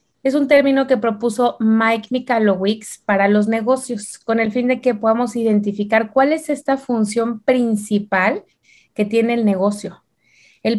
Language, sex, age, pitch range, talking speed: Spanish, female, 30-49, 210-260 Hz, 150 wpm